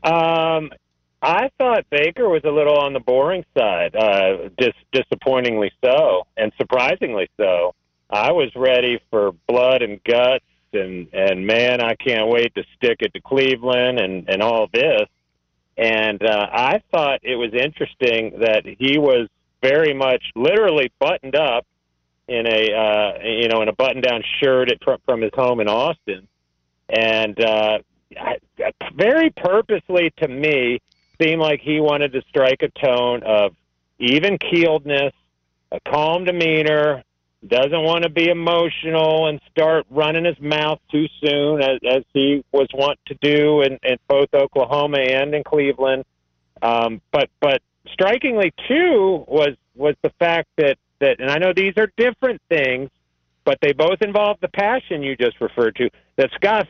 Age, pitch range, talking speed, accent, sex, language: 40-59, 110-155 Hz, 155 wpm, American, male, English